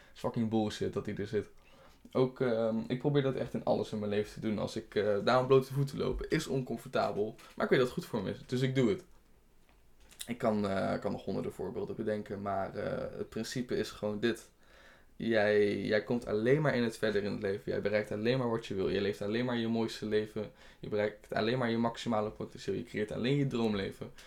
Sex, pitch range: male, 105-130 Hz